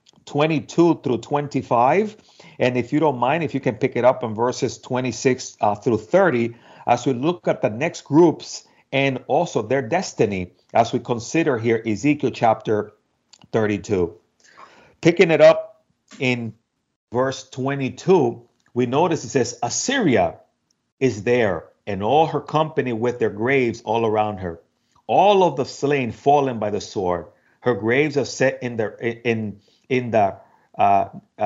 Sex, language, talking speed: male, English, 155 wpm